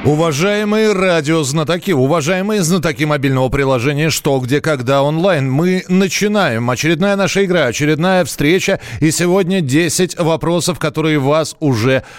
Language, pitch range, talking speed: Russian, 145-185 Hz, 120 wpm